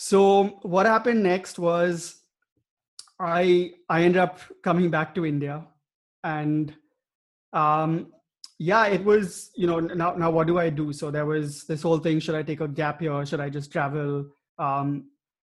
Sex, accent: male, Indian